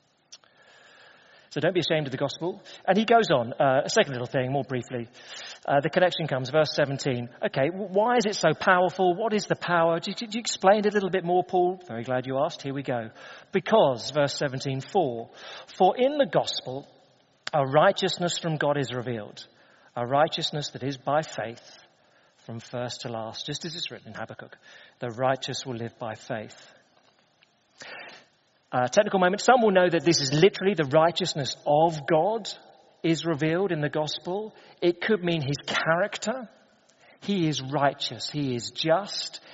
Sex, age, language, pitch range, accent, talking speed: male, 40-59, English, 130-180 Hz, British, 180 wpm